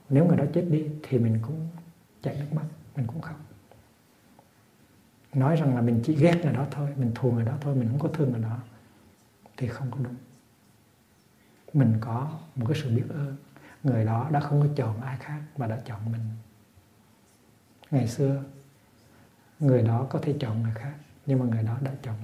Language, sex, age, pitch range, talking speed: Vietnamese, male, 60-79, 115-150 Hz, 195 wpm